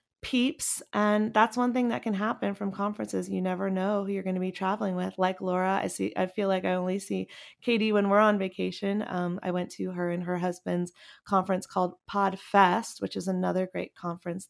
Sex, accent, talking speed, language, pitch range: female, American, 215 wpm, English, 185-215 Hz